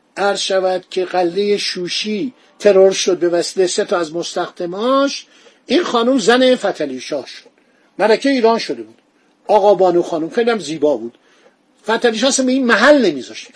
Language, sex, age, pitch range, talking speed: Persian, male, 50-69, 185-245 Hz, 145 wpm